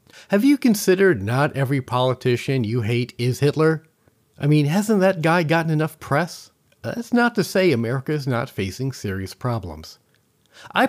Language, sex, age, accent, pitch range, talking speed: English, male, 40-59, American, 110-160 Hz, 160 wpm